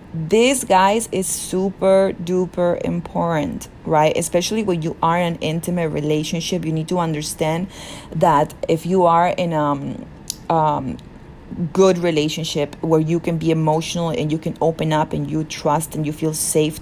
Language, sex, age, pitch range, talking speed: English, female, 30-49, 155-180 Hz, 160 wpm